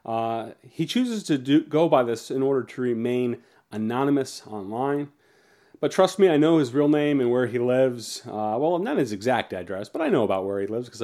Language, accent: English, American